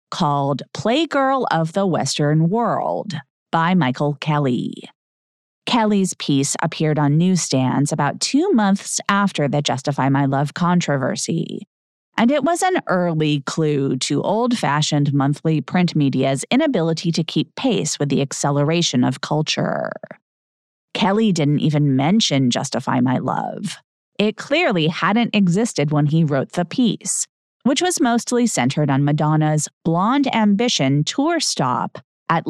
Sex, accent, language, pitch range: female, American, English, 145-225 Hz